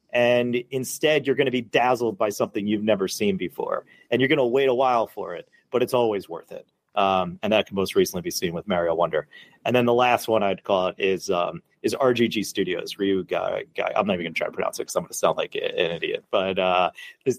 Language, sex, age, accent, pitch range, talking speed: English, male, 30-49, American, 100-130 Hz, 255 wpm